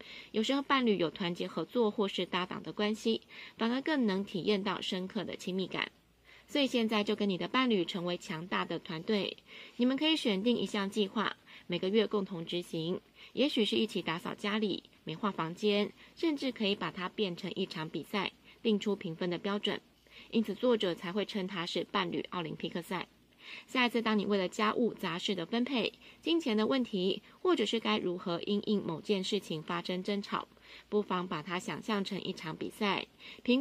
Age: 20-39